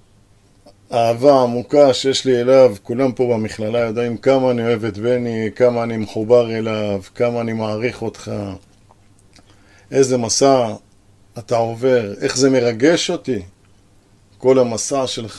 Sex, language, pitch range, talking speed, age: male, Hebrew, 105-130 Hz, 130 wpm, 50-69